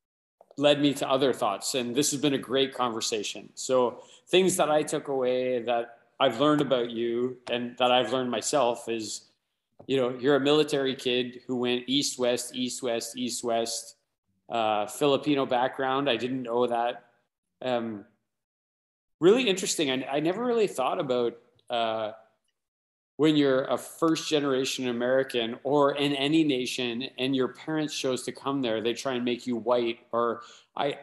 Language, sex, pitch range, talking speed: English, male, 115-140 Hz, 165 wpm